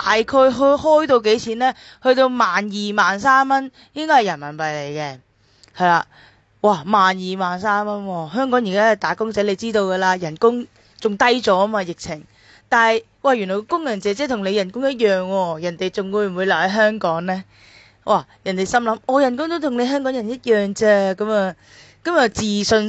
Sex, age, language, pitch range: female, 20-39, Chinese, 175-235 Hz